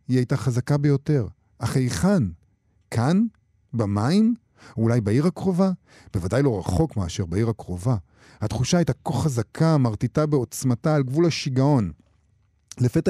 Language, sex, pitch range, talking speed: Hebrew, male, 105-135 Hz, 130 wpm